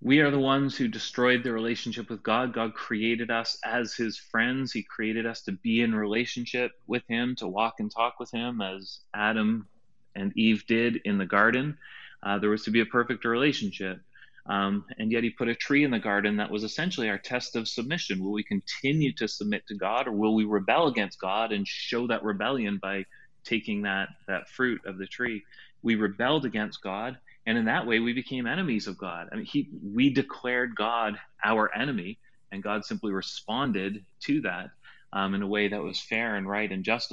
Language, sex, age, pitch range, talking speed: English, male, 30-49, 105-120 Hz, 205 wpm